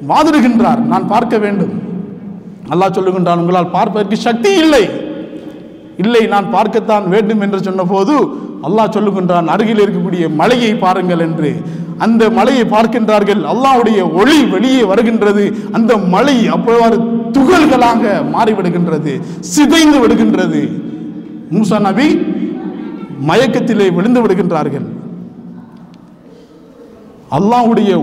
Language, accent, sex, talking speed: Tamil, native, male, 65 wpm